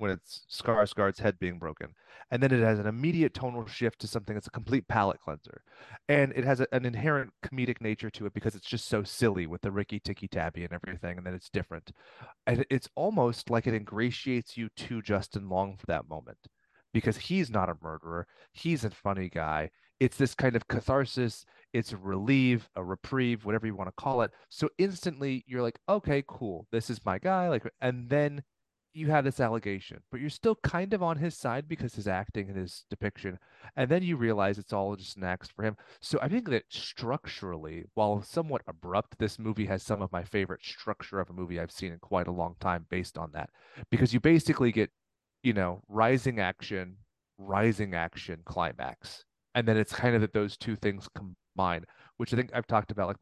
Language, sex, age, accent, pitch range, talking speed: English, male, 30-49, American, 95-125 Hz, 205 wpm